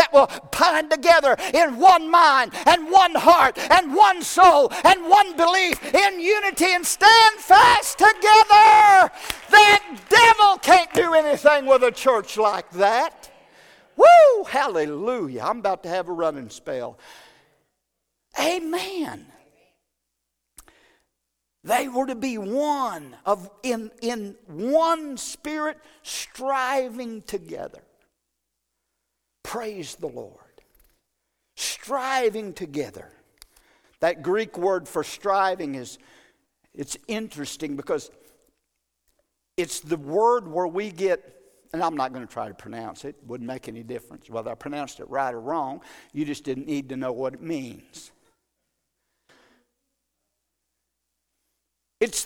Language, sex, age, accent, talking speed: English, male, 50-69, American, 120 wpm